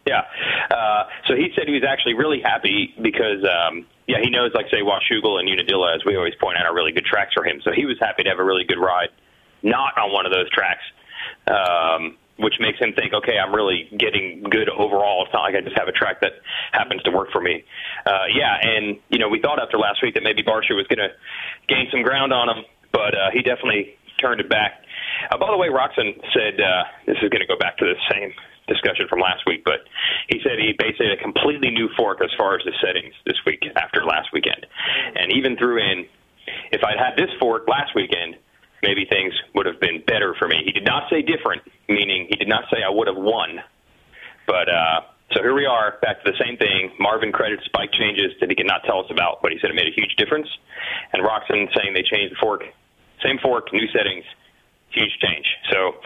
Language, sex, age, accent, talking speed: English, male, 30-49, American, 235 wpm